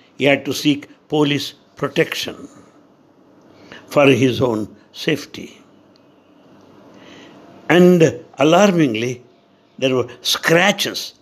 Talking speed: 80 wpm